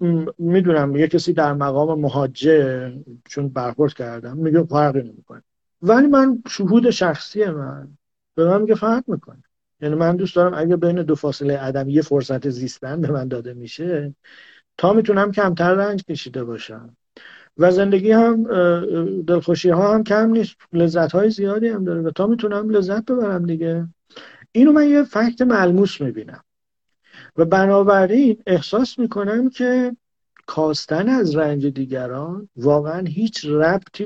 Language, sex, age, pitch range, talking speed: Persian, male, 50-69, 145-205 Hz, 145 wpm